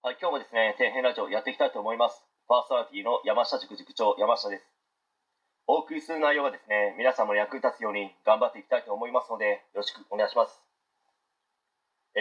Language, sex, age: Japanese, male, 30-49